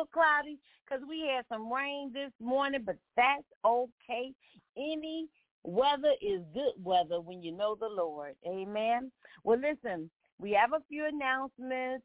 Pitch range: 185-250 Hz